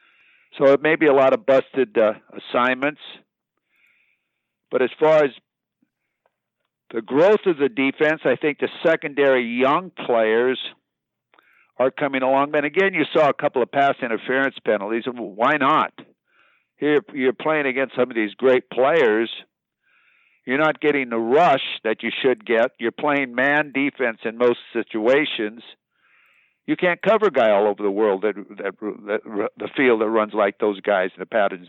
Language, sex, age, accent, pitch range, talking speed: English, male, 60-79, American, 115-145 Hz, 165 wpm